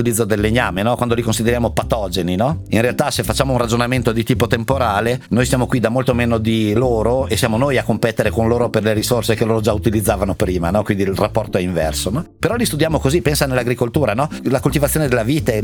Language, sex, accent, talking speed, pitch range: Italian, male, native, 230 wpm, 110-140 Hz